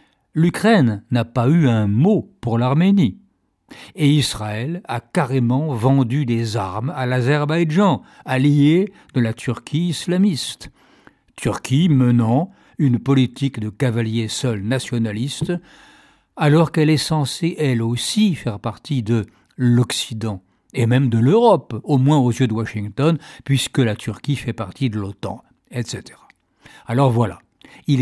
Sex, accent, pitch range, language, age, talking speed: male, French, 115-145 Hz, French, 60-79, 130 wpm